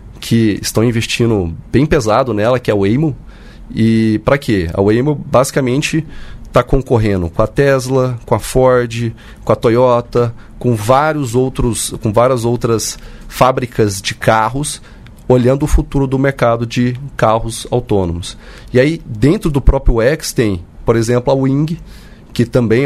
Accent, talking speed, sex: Brazilian, 145 wpm, male